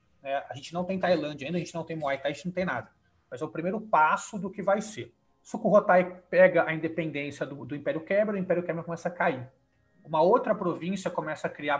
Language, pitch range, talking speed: Portuguese, 150-185 Hz, 235 wpm